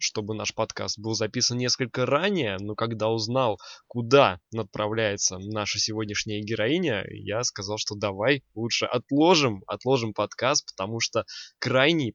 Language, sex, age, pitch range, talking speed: Russian, male, 20-39, 105-125 Hz, 130 wpm